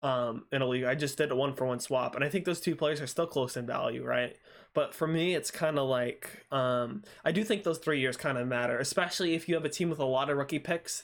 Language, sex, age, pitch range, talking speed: English, male, 20-39, 135-190 Hz, 290 wpm